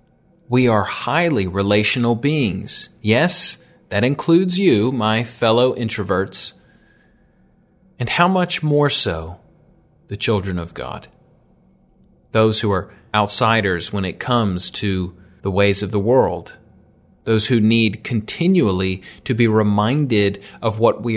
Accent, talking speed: American, 125 wpm